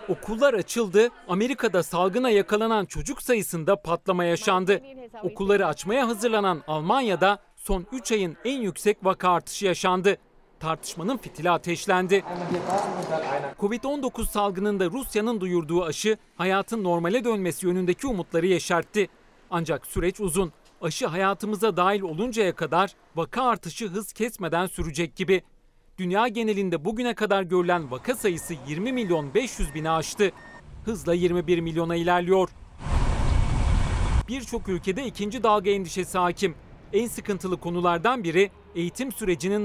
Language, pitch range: Turkish, 170-215 Hz